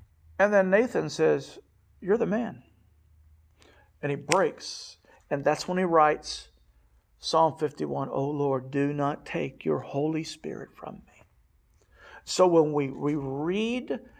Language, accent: English, American